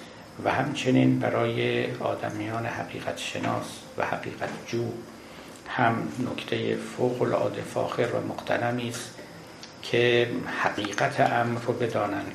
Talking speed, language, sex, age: 95 wpm, Persian, male, 60-79